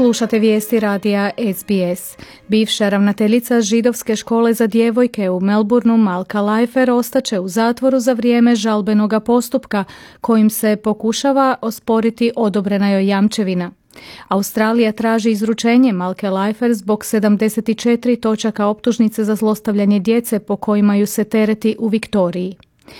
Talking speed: 125 wpm